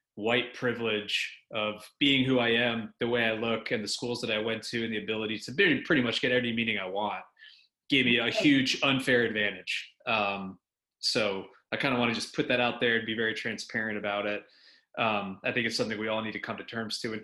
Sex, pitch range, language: male, 110-135 Hz, English